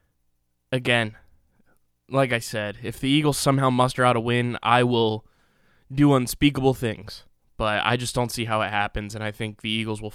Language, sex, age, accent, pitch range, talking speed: English, male, 20-39, American, 110-130 Hz, 185 wpm